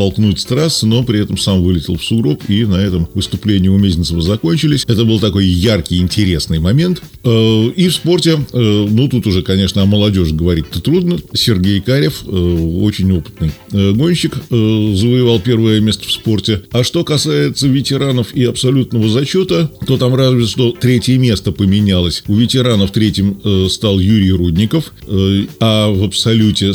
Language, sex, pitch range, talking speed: Russian, male, 95-125 Hz, 150 wpm